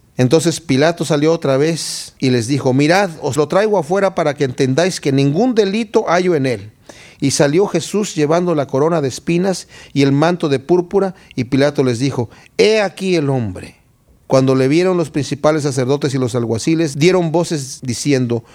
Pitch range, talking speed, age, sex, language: 130-185 Hz, 180 wpm, 40-59, male, Spanish